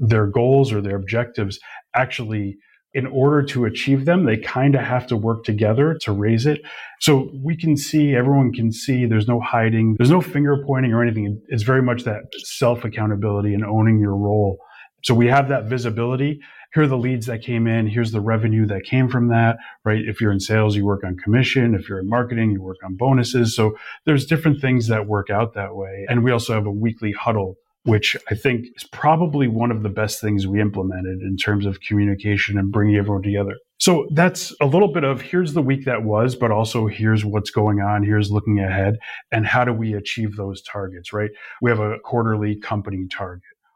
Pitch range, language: 105-130 Hz, English